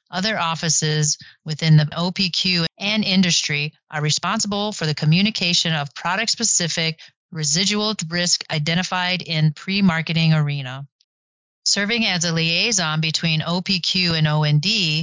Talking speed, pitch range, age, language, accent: 110 wpm, 155-185 Hz, 30-49, English, American